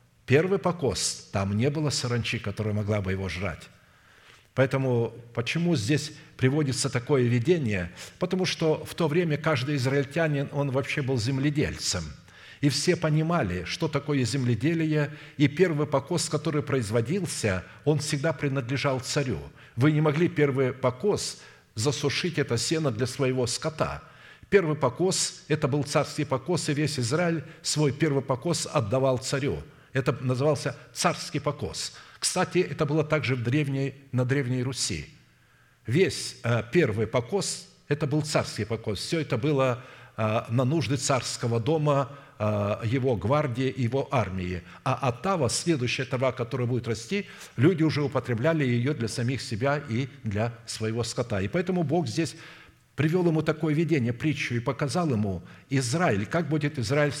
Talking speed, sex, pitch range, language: 140 wpm, male, 120-155 Hz, Russian